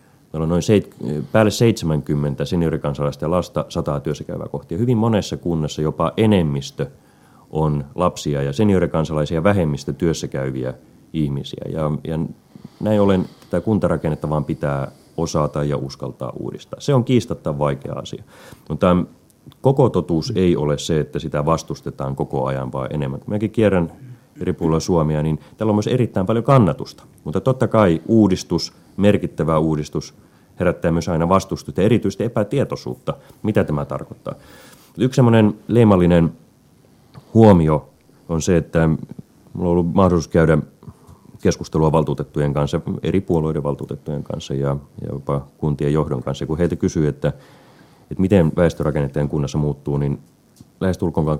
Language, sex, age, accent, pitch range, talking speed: Finnish, male, 30-49, native, 75-95 Hz, 135 wpm